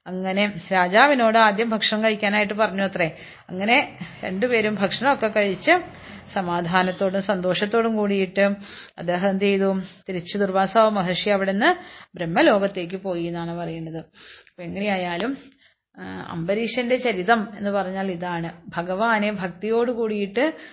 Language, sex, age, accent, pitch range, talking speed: Malayalam, female, 30-49, native, 190-230 Hz, 100 wpm